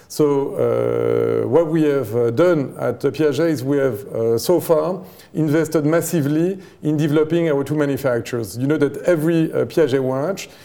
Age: 50-69